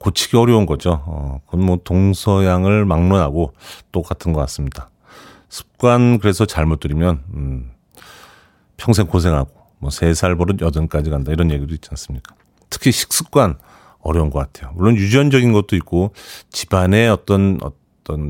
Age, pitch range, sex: 40-59, 75-100 Hz, male